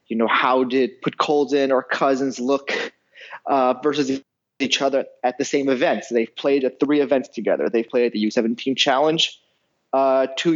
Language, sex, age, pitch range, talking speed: English, male, 30-49, 130-155 Hz, 190 wpm